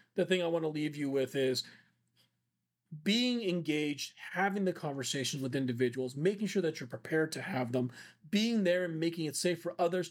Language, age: English, 40-59